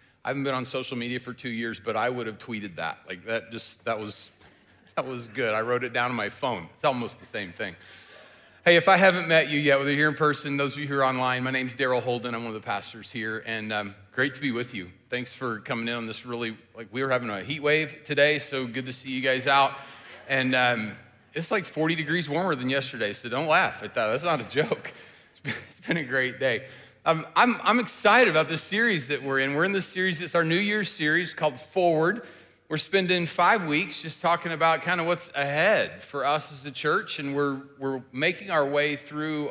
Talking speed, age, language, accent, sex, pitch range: 240 wpm, 40-59, English, American, male, 125-155 Hz